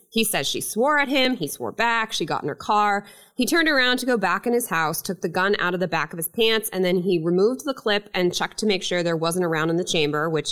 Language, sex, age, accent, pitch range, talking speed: English, female, 20-39, American, 165-220 Hz, 295 wpm